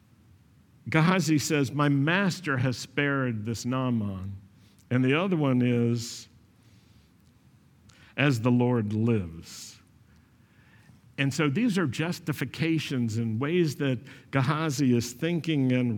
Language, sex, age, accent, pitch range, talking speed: English, male, 60-79, American, 115-155 Hz, 110 wpm